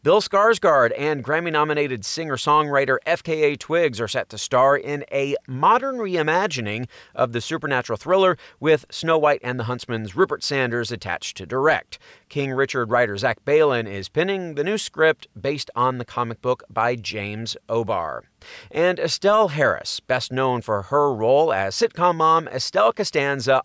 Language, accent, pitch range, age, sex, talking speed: English, American, 120-165 Hz, 30-49, male, 155 wpm